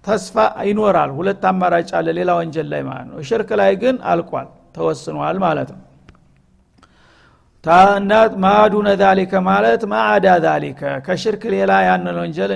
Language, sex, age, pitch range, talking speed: Amharic, male, 60-79, 165-210 Hz, 130 wpm